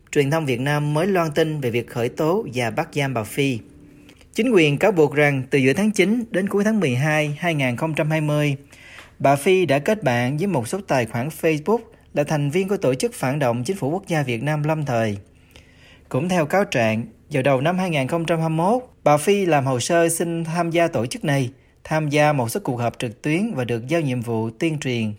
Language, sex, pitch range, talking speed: Vietnamese, male, 125-170 Hz, 215 wpm